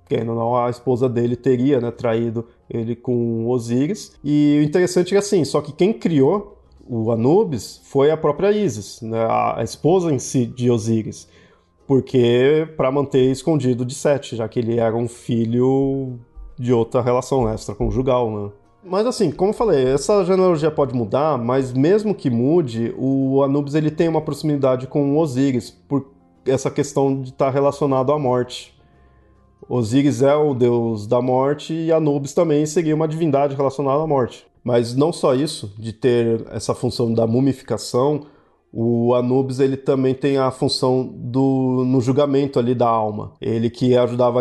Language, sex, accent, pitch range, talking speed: Portuguese, male, Brazilian, 120-145 Hz, 170 wpm